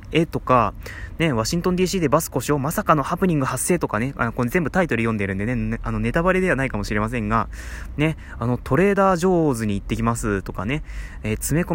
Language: Japanese